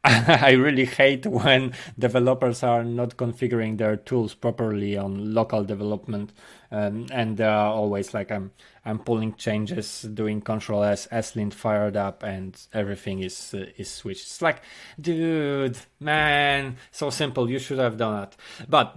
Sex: male